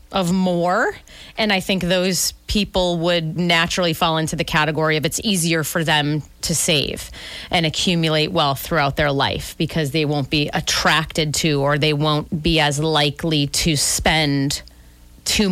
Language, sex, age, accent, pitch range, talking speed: English, female, 30-49, American, 145-175 Hz, 160 wpm